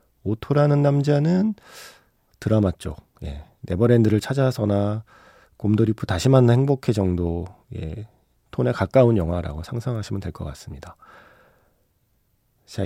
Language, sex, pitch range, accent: Korean, male, 95-135 Hz, native